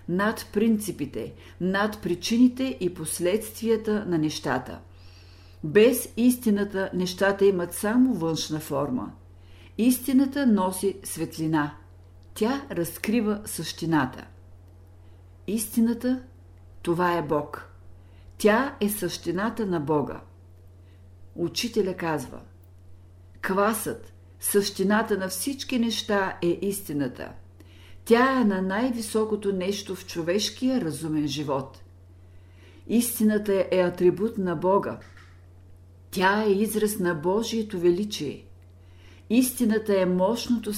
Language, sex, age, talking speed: Bulgarian, female, 50-69, 95 wpm